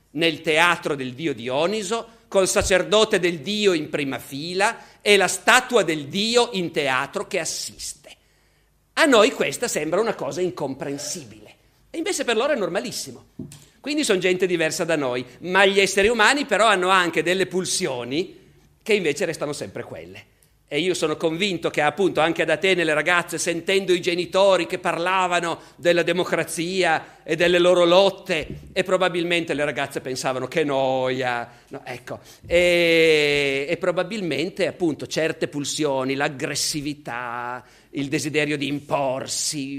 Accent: native